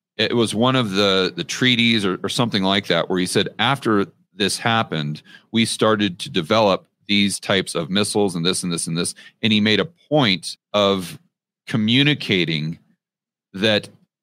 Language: English